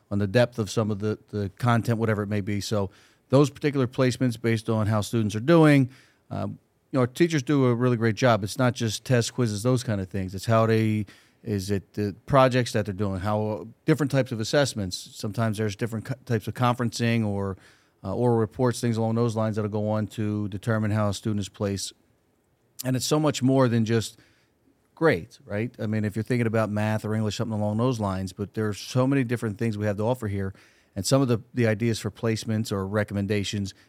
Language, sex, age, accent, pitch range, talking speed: English, male, 40-59, American, 105-120 Hz, 220 wpm